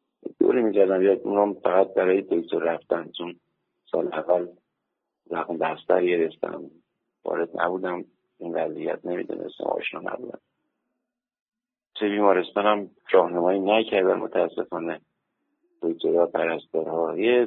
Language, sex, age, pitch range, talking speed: Persian, male, 50-69, 90-120 Hz, 100 wpm